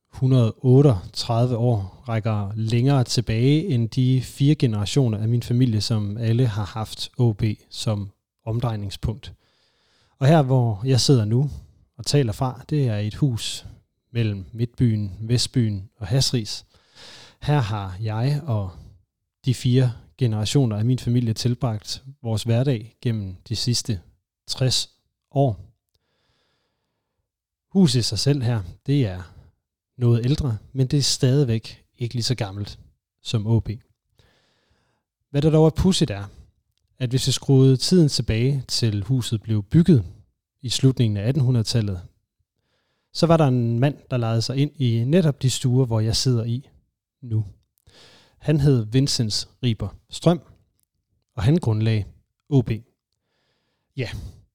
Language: Danish